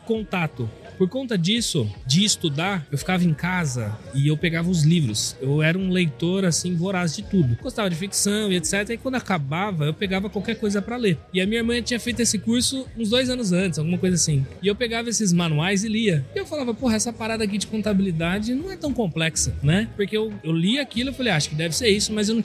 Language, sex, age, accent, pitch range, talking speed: Portuguese, male, 20-39, Brazilian, 165-215 Hz, 240 wpm